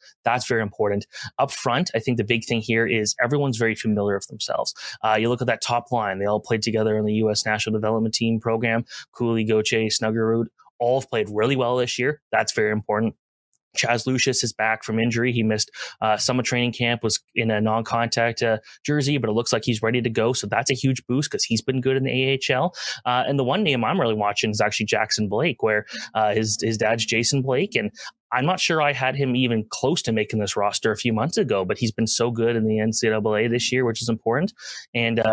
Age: 20-39